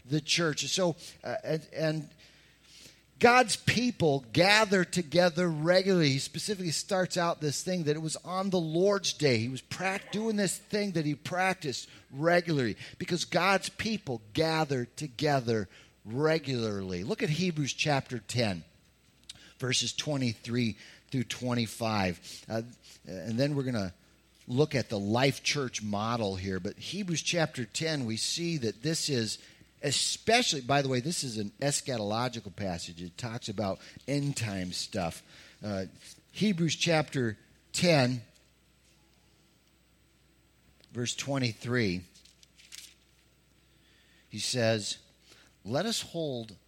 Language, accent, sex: English, American, male